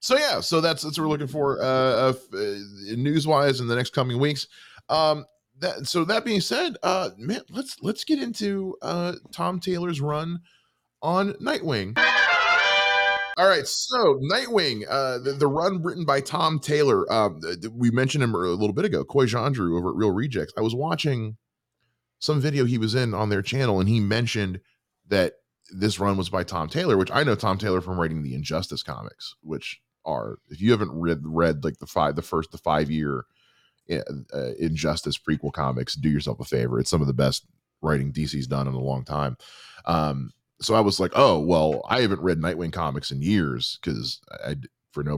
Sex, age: male, 20-39